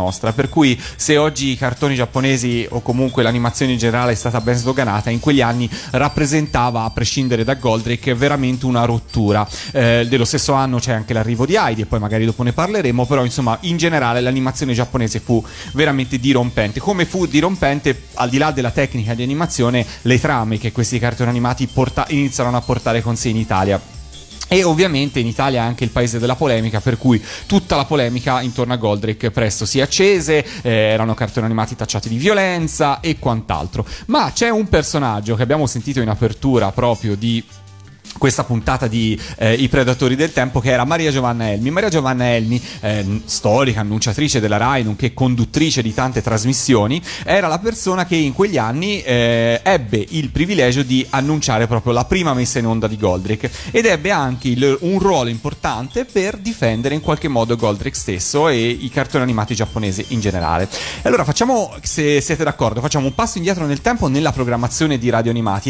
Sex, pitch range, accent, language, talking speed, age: male, 115-145 Hz, native, Italian, 180 wpm, 30-49